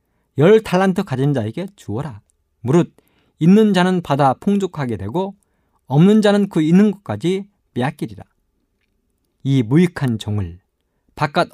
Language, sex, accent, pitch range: Korean, male, native, 110-185 Hz